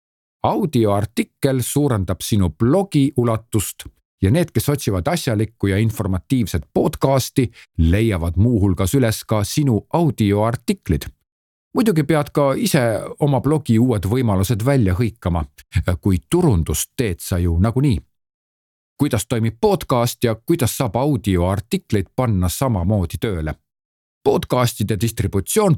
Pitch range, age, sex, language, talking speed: 95-130 Hz, 50-69, male, Czech, 115 wpm